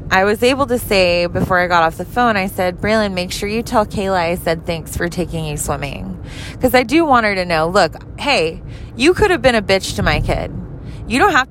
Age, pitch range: 20-39, 155-205 Hz